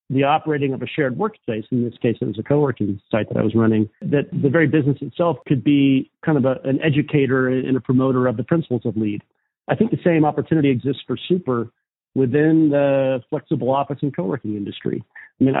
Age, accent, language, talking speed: 40-59, American, English, 210 wpm